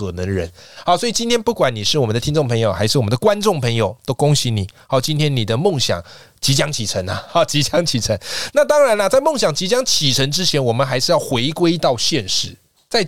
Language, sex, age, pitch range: Chinese, male, 20-39, 115-160 Hz